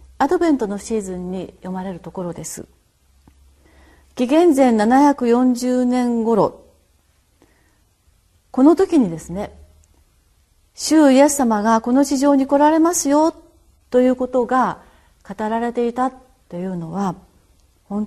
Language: Japanese